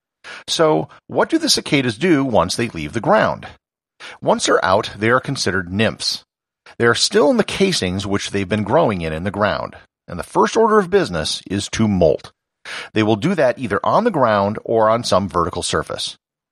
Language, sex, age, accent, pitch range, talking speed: English, male, 50-69, American, 95-145 Hz, 195 wpm